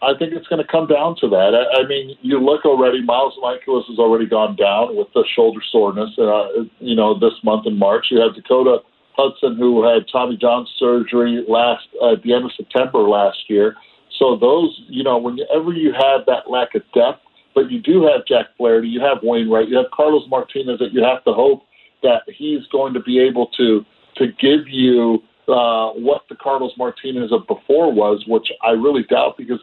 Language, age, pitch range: English, 40-59, 120-155 Hz